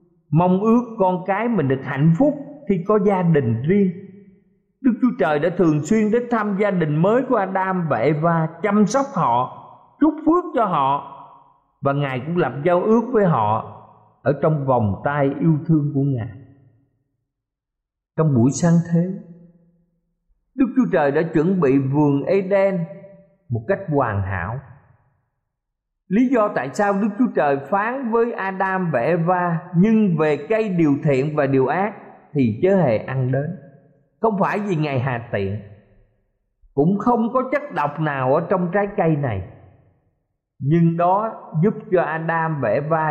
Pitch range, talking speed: 135-200 Hz, 160 wpm